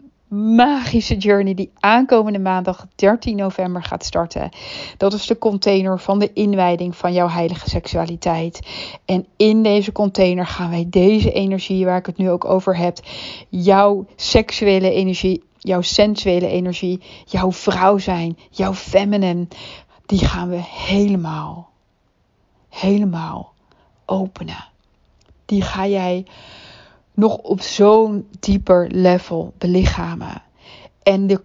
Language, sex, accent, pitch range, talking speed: Dutch, female, Dutch, 180-200 Hz, 120 wpm